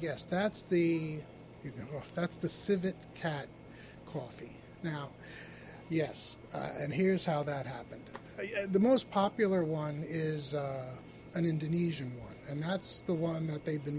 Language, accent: English, American